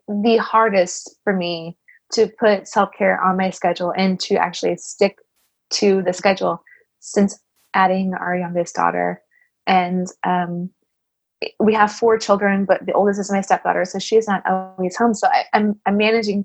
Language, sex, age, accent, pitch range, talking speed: English, female, 20-39, American, 185-230 Hz, 165 wpm